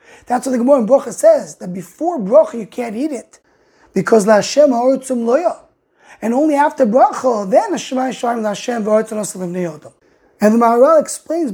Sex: male